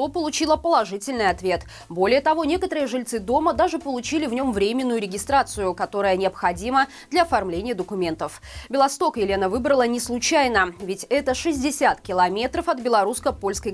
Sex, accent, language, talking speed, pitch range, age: female, native, Russian, 130 wpm, 205-285 Hz, 20-39